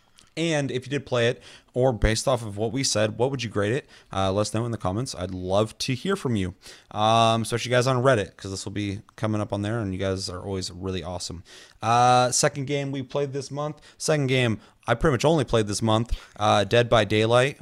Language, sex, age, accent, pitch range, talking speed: English, male, 30-49, American, 95-120 Hz, 245 wpm